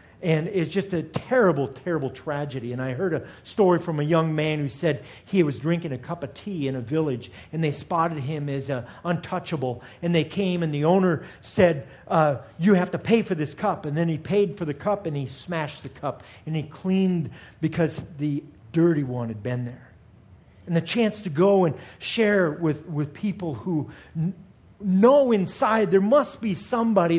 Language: English